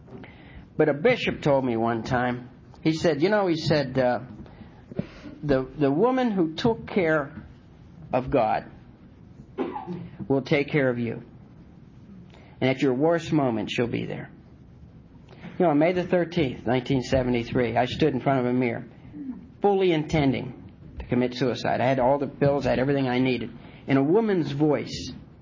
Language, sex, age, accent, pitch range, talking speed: English, male, 50-69, American, 120-150 Hz, 160 wpm